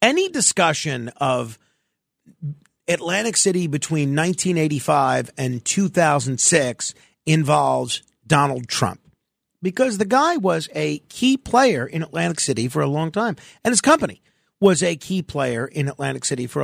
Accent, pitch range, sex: American, 135-195 Hz, male